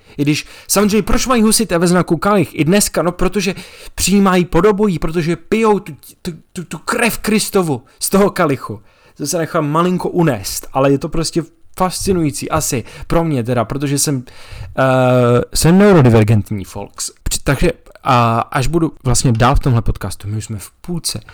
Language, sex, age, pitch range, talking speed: Czech, male, 20-39, 110-155 Hz, 170 wpm